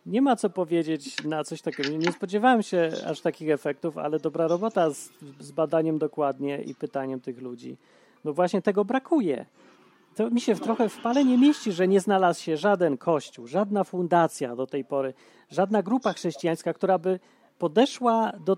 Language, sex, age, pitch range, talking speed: Polish, male, 30-49, 155-210 Hz, 180 wpm